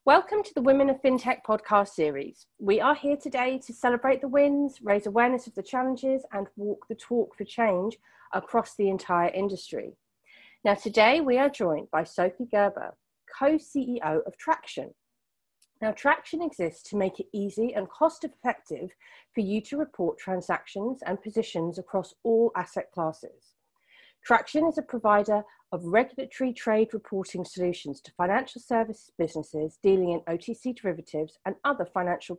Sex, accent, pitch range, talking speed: female, British, 185-265 Hz, 155 wpm